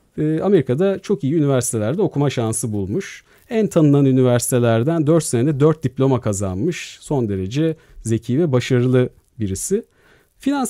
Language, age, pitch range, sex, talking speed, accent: Turkish, 50-69, 120-160 Hz, male, 125 wpm, native